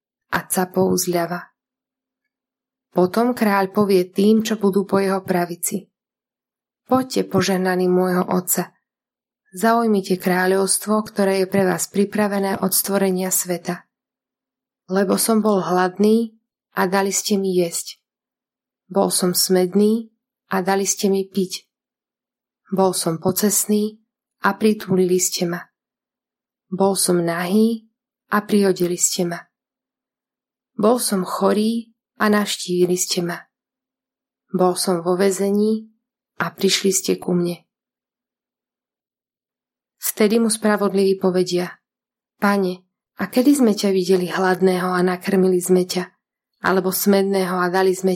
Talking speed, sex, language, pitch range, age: 115 wpm, female, Slovak, 185-215 Hz, 20-39